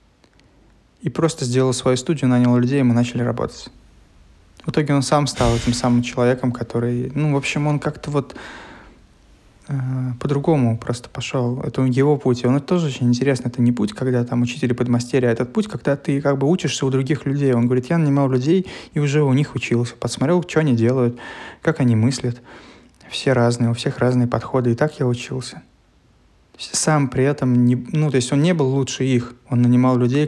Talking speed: 195 wpm